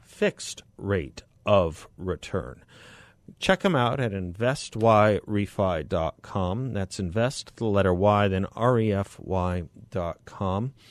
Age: 50-69